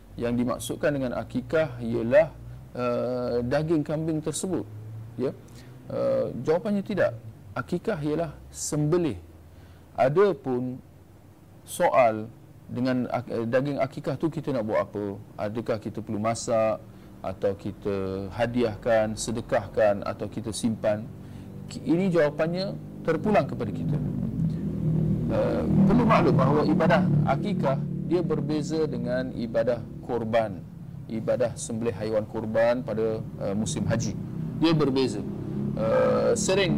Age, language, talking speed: 40-59, Malay, 110 wpm